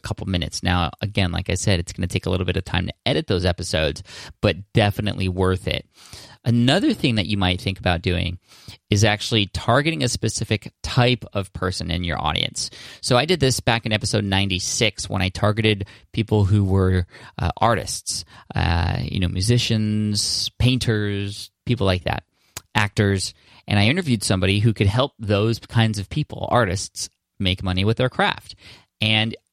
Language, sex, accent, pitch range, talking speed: English, male, American, 95-115 Hz, 175 wpm